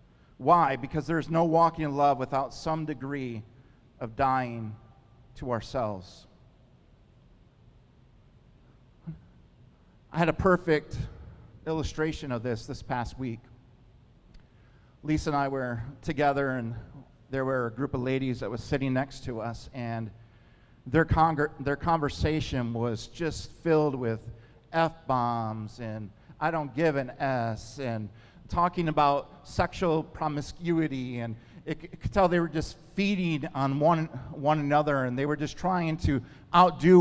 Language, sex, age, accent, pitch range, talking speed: English, male, 50-69, American, 125-160 Hz, 135 wpm